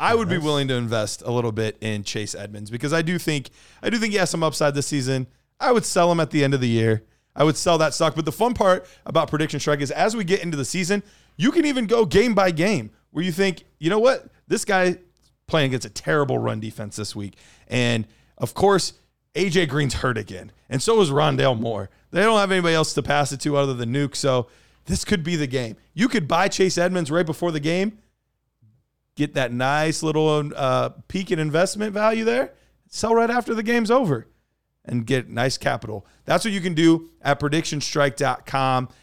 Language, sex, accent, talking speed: English, male, American, 220 wpm